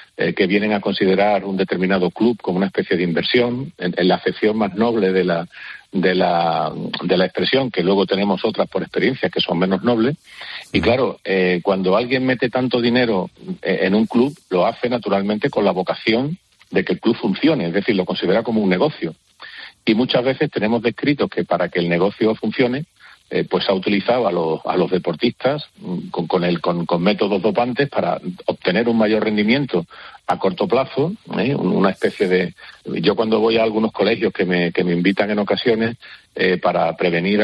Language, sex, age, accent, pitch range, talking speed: Spanish, male, 50-69, Spanish, 95-125 Hz, 190 wpm